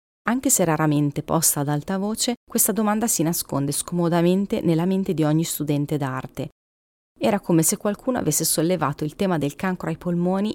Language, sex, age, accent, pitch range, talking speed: Italian, female, 30-49, native, 150-190 Hz, 170 wpm